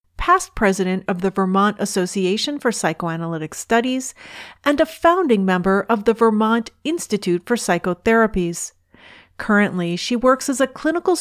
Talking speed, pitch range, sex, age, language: 135 wpm, 185-260 Hz, female, 40-59, English